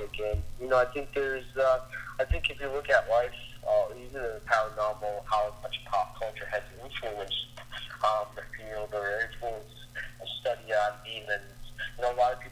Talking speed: 175 wpm